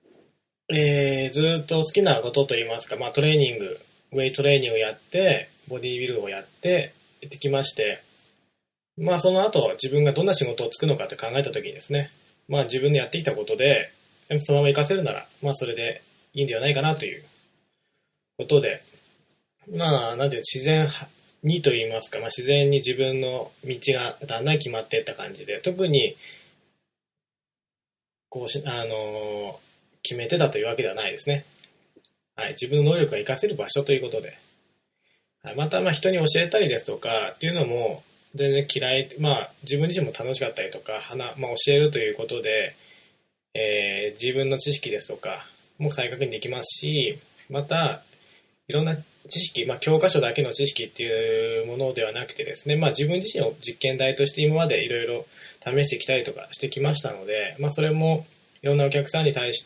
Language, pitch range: Japanese, 135-160 Hz